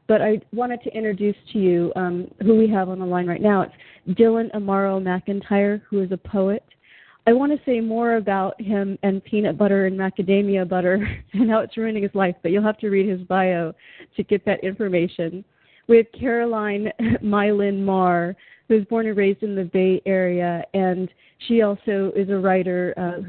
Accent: American